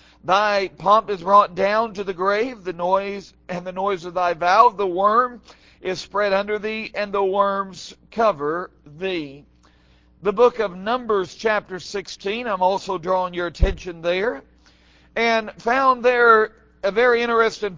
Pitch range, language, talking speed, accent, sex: 185-230 Hz, English, 150 wpm, American, male